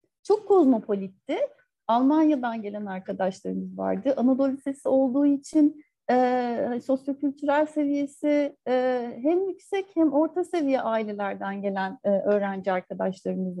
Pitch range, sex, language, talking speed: 235-315 Hz, female, Turkish, 105 wpm